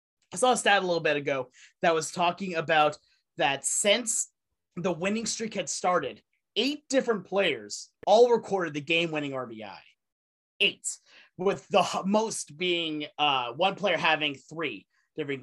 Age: 30-49